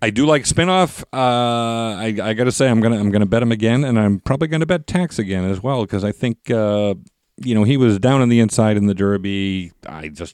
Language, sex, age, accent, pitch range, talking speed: English, male, 40-59, American, 85-120 Hz, 245 wpm